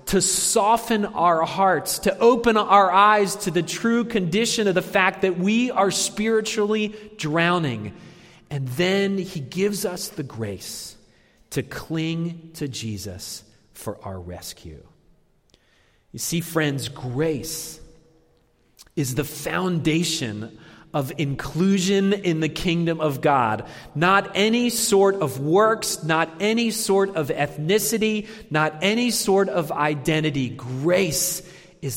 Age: 30-49